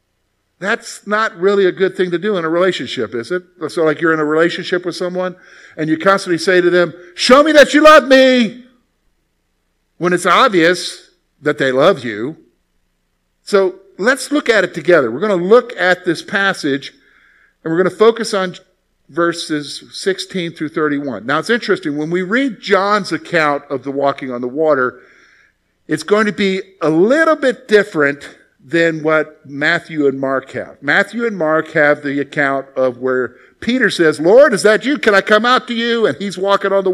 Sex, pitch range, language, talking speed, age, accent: male, 150-205 Hz, English, 190 wpm, 50-69, American